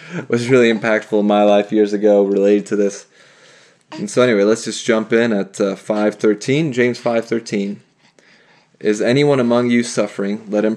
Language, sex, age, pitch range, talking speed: English, male, 20-39, 95-115 Hz, 165 wpm